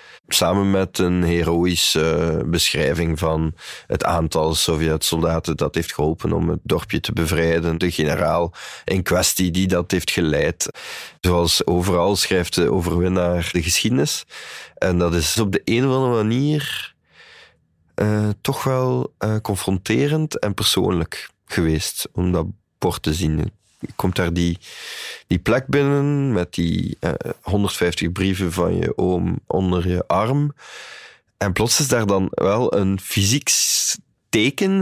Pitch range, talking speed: 85-105 Hz, 140 wpm